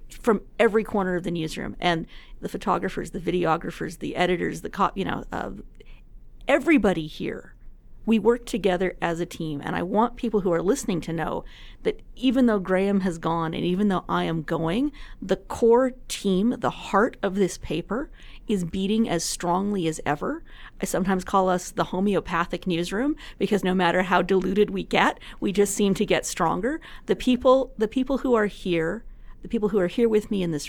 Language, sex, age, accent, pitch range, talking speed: English, female, 40-59, American, 175-220 Hz, 190 wpm